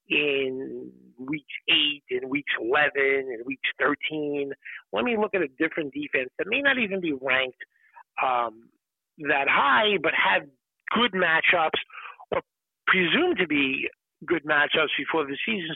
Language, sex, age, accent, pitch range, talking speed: English, male, 50-69, American, 140-170 Hz, 145 wpm